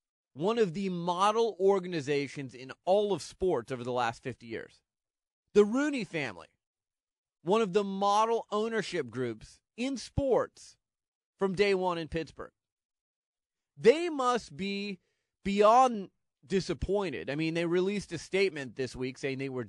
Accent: American